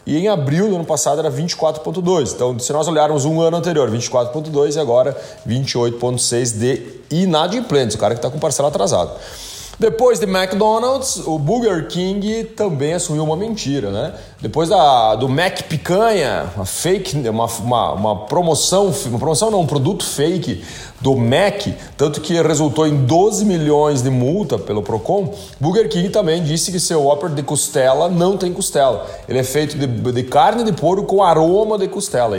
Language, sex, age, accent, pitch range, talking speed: Portuguese, male, 30-49, Brazilian, 135-195 Hz, 175 wpm